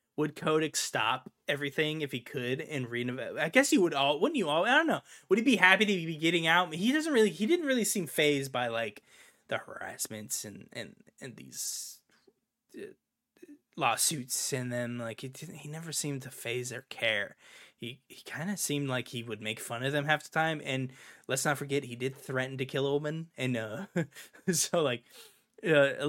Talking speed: 200 wpm